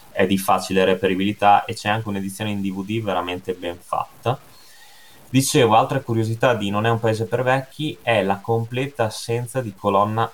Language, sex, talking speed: Italian, male, 170 wpm